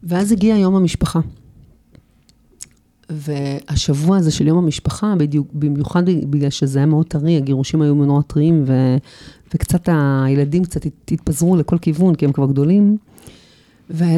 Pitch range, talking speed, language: 150-180 Hz, 130 wpm, Hebrew